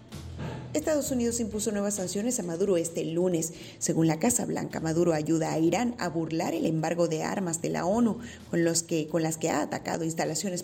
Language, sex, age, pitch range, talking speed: Spanish, female, 30-49, 165-195 Hz, 185 wpm